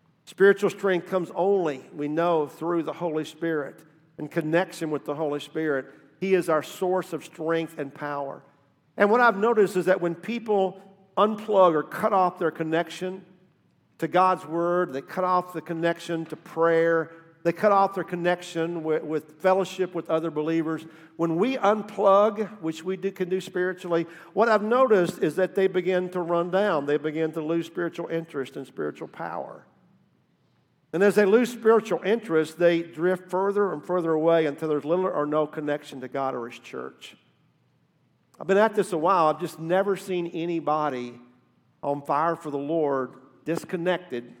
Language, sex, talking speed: English, male, 170 wpm